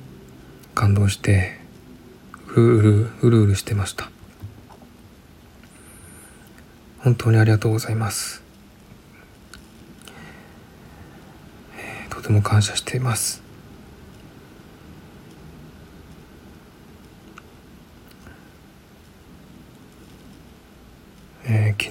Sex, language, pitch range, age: male, Japanese, 100-115 Hz, 40-59